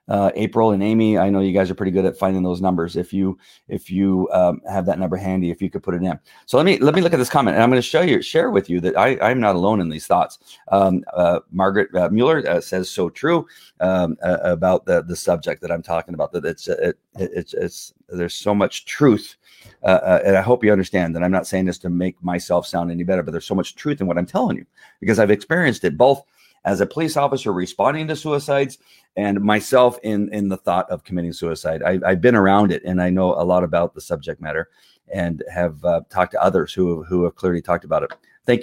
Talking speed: 255 wpm